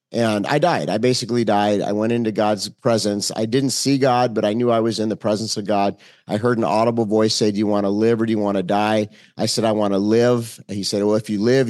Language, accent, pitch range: English, American, 115-145 Hz